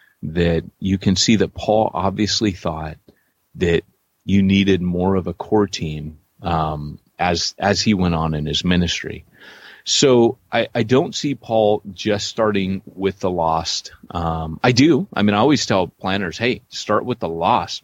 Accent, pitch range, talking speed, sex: American, 85-105 Hz, 170 wpm, male